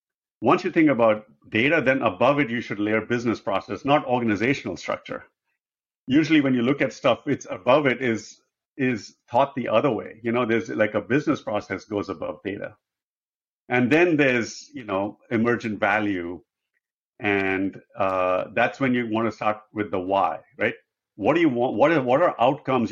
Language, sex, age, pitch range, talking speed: English, male, 50-69, 105-130 Hz, 180 wpm